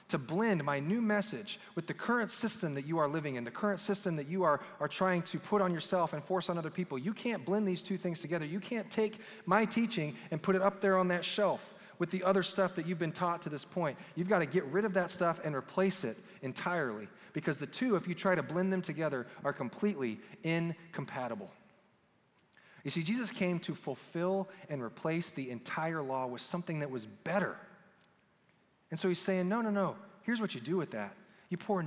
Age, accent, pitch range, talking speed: 40-59, American, 150-195 Hz, 220 wpm